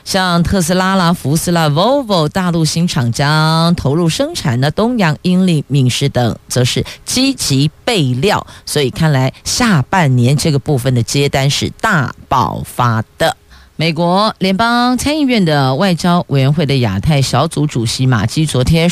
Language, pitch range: Chinese, 125-180 Hz